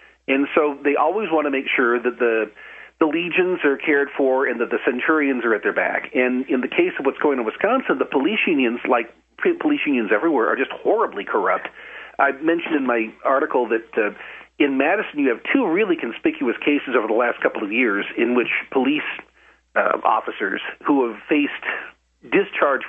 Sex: male